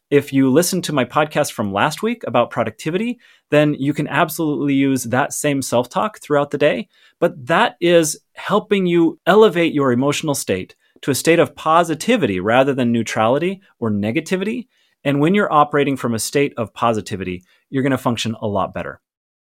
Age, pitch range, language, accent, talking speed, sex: 30-49, 120-165 Hz, English, American, 175 wpm, male